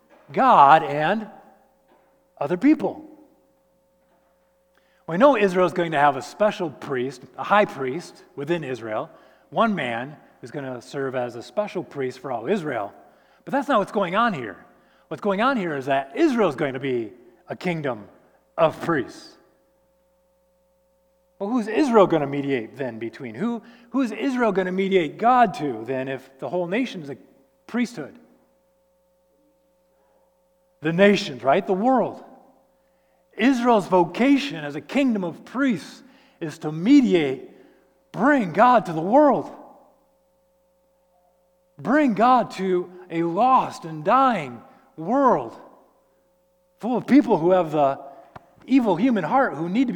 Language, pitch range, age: English, 160-235 Hz, 30-49